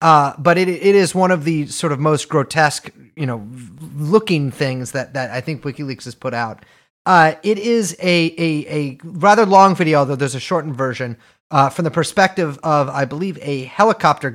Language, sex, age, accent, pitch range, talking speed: English, male, 30-49, American, 140-180 Hz, 195 wpm